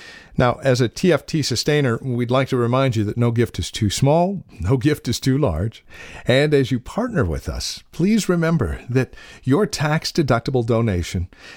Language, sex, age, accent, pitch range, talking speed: English, male, 50-69, American, 100-150 Hz, 170 wpm